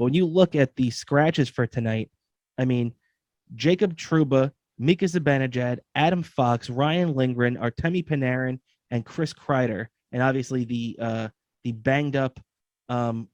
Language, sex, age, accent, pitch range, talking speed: English, male, 20-39, American, 115-150 Hz, 145 wpm